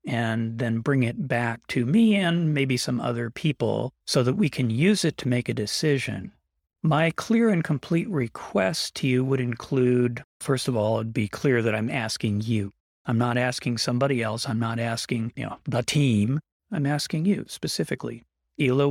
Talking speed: 185 wpm